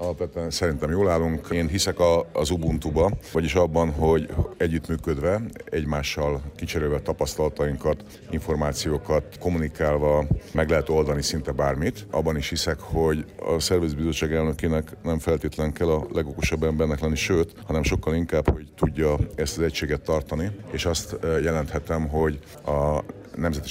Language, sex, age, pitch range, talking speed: Hungarian, male, 50-69, 75-80 Hz, 135 wpm